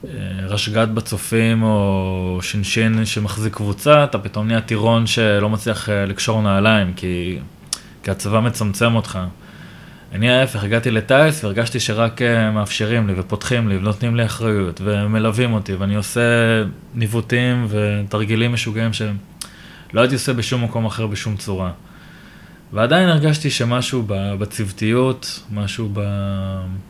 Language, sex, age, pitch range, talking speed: Hebrew, male, 20-39, 105-125 Hz, 120 wpm